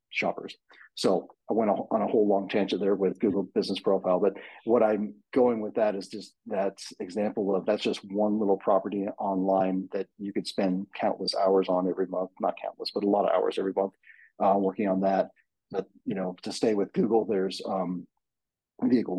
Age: 40-59